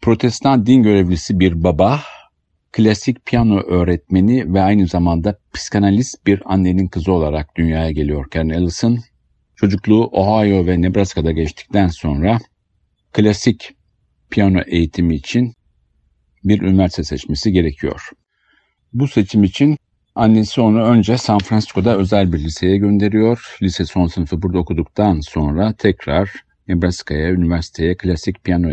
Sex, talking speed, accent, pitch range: male, 115 wpm, native, 85-110 Hz